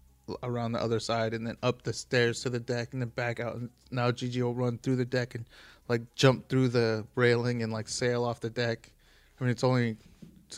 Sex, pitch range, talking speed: male, 115-130 Hz, 235 wpm